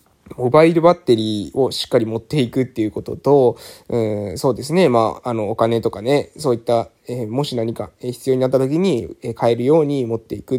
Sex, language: male, Japanese